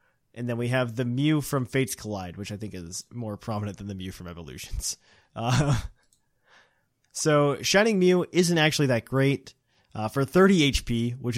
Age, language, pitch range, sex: 20-39, English, 110-135 Hz, male